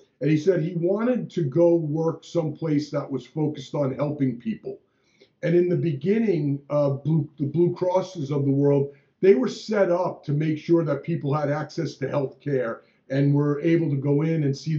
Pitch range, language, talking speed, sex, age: 145-175 Hz, English, 195 wpm, male, 50-69